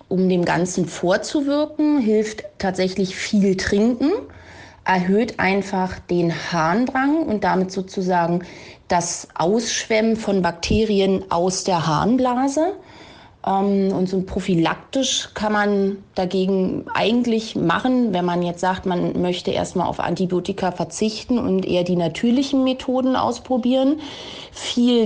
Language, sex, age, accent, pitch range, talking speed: German, female, 30-49, German, 185-235 Hz, 115 wpm